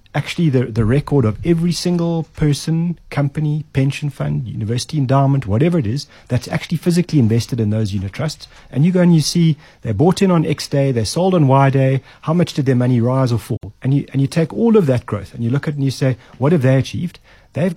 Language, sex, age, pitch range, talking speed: English, male, 40-59, 120-155 Hz, 240 wpm